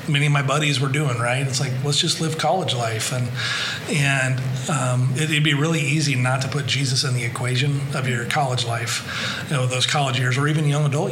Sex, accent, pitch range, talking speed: male, American, 125-150 Hz, 225 wpm